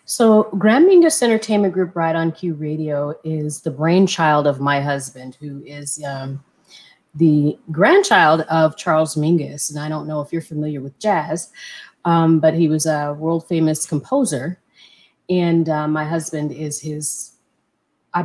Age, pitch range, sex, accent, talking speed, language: 30-49, 155-205 Hz, female, American, 155 wpm, English